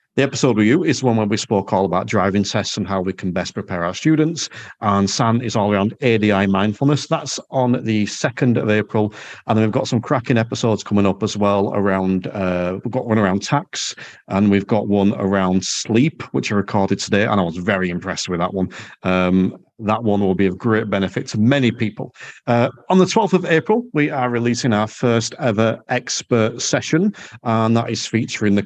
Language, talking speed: English, 210 wpm